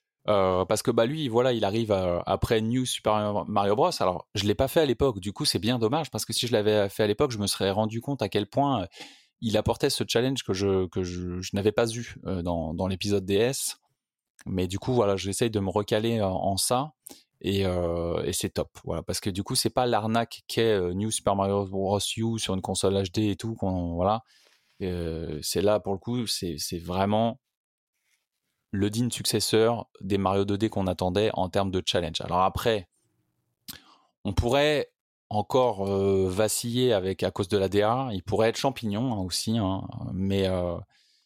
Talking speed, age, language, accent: 205 wpm, 20-39, French, French